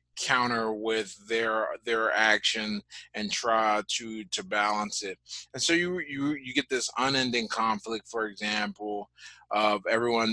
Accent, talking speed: American, 140 wpm